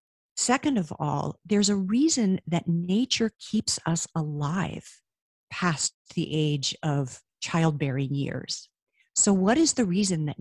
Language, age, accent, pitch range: English, 50-69, American, 145-175 Hz